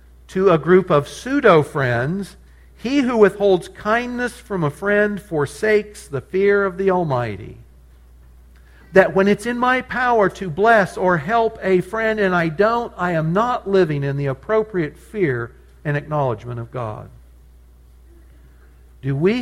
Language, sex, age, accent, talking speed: English, male, 60-79, American, 145 wpm